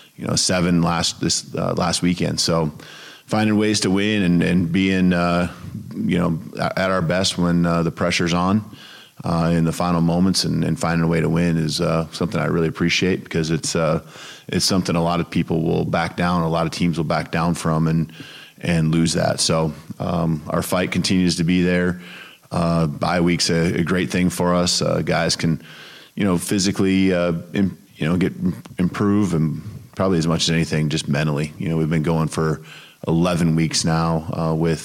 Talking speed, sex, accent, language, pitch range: 200 wpm, male, American, English, 80-90 Hz